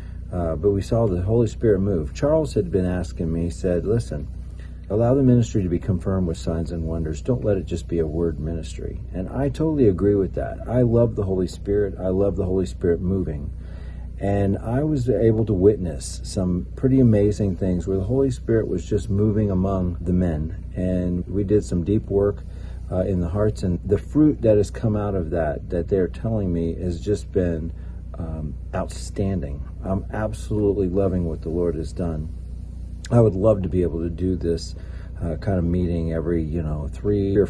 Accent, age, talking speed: American, 40-59, 200 wpm